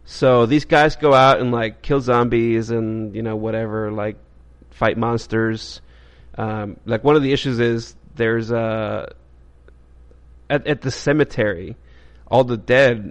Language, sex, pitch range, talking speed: English, male, 105-120 Hz, 145 wpm